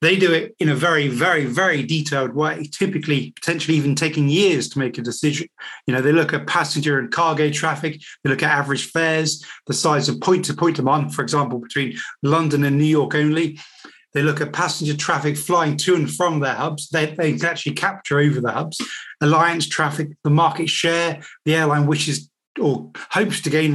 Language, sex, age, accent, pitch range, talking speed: English, male, 30-49, British, 140-165 Hz, 195 wpm